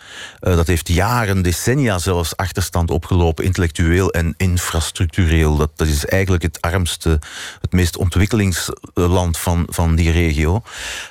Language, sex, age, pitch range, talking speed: Dutch, male, 40-59, 85-100 Hz, 130 wpm